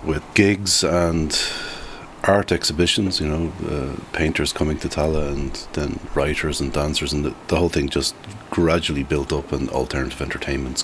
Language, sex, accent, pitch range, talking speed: English, male, Irish, 70-85 Hz, 160 wpm